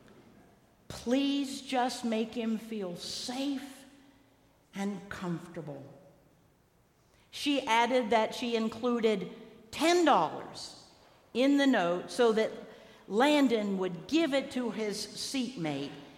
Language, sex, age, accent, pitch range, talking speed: English, female, 50-69, American, 175-255 Hz, 95 wpm